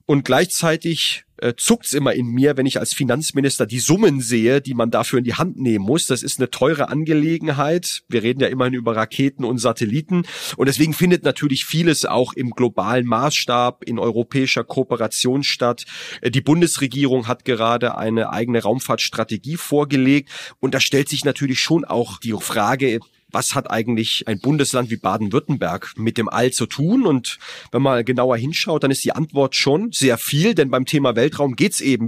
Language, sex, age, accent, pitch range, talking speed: German, male, 30-49, German, 115-140 Hz, 180 wpm